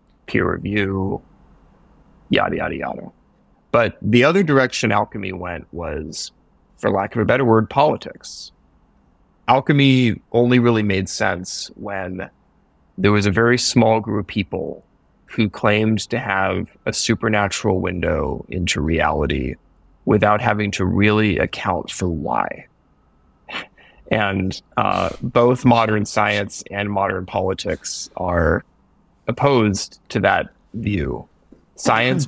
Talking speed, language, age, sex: 115 wpm, English, 30-49, male